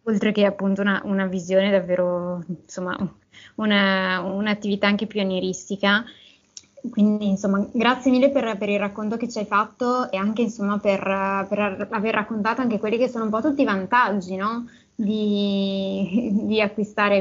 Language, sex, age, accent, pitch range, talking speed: Italian, female, 20-39, native, 195-215 Hz, 155 wpm